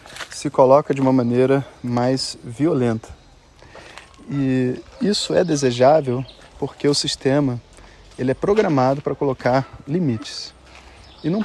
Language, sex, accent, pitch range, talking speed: Portuguese, male, Brazilian, 125-160 Hz, 115 wpm